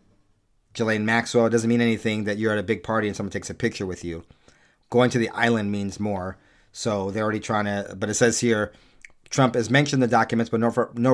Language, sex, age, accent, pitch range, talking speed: English, male, 40-59, American, 105-130 Hz, 220 wpm